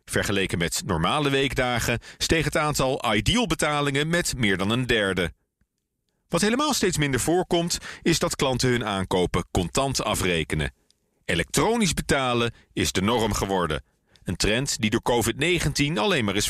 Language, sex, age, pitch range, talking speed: Dutch, male, 40-59, 105-175 Hz, 145 wpm